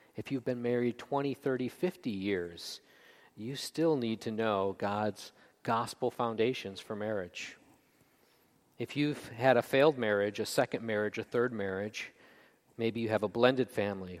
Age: 40-59